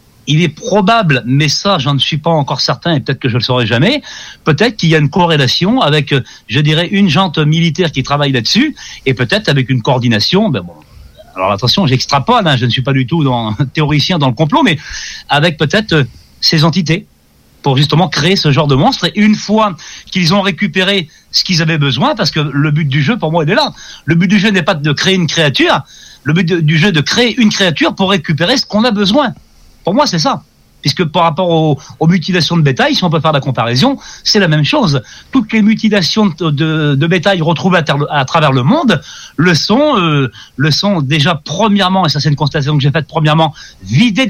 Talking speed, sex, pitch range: 225 wpm, male, 140-185 Hz